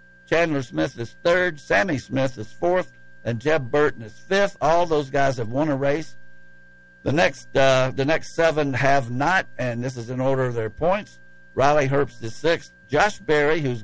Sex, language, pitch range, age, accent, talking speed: male, English, 115-160 Hz, 60-79, American, 185 wpm